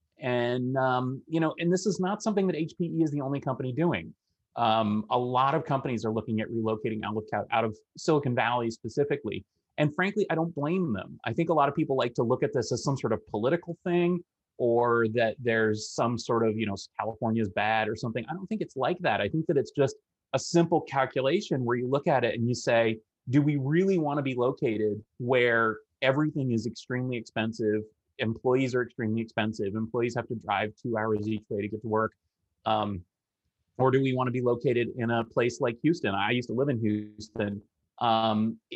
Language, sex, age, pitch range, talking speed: English, male, 30-49, 110-140 Hz, 210 wpm